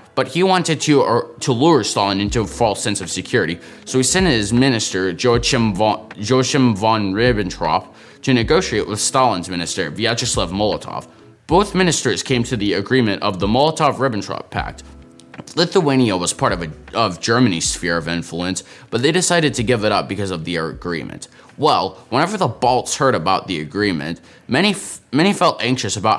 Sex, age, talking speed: male, 20-39, 175 wpm